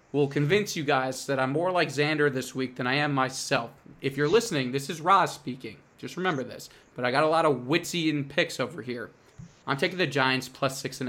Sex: male